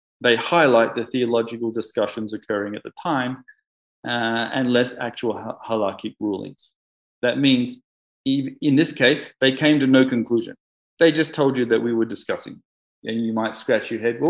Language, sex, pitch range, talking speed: English, male, 110-145 Hz, 175 wpm